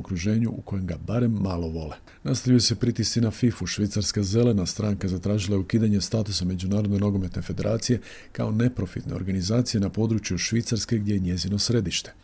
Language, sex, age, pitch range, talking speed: Croatian, male, 50-69, 95-115 Hz, 155 wpm